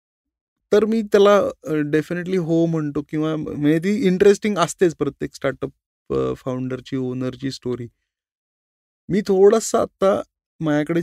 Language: Marathi